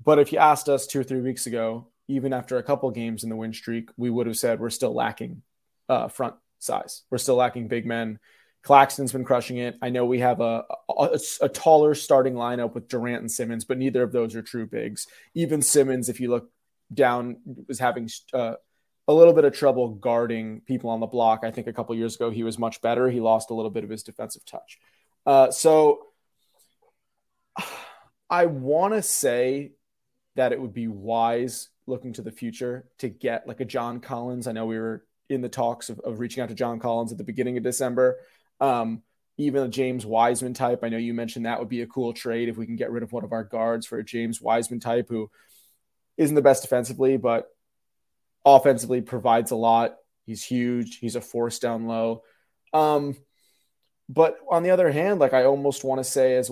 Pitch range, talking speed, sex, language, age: 115-130 Hz, 210 wpm, male, English, 20-39